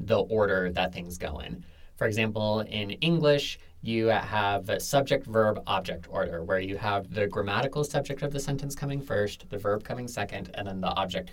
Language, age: English, 20-39